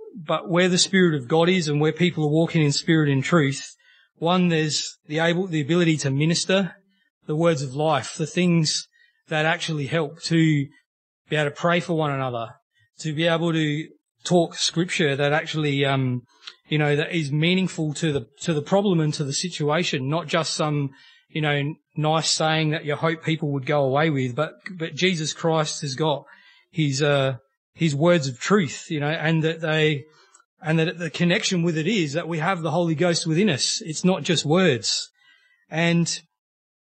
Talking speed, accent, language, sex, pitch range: 190 wpm, Australian, English, male, 150-175 Hz